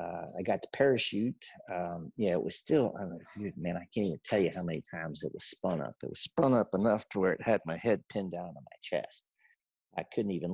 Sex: male